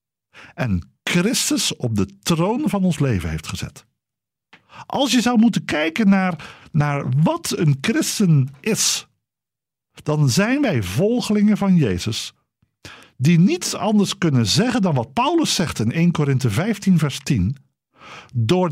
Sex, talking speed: male, 140 wpm